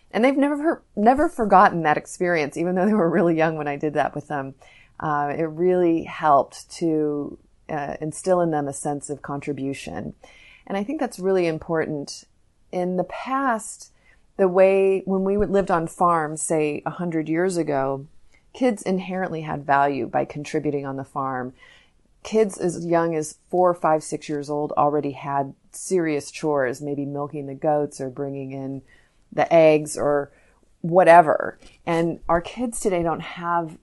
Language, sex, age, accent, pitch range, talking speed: English, female, 30-49, American, 150-185 Hz, 165 wpm